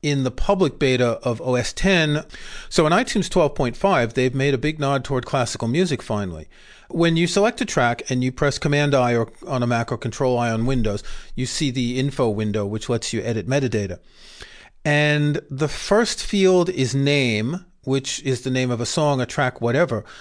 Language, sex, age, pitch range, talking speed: English, male, 40-59, 120-155 Hz, 185 wpm